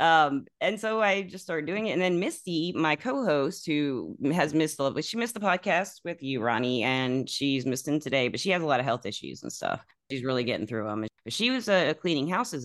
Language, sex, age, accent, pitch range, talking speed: English, female, 30-49, American, 115-150 Hz, 235 wpm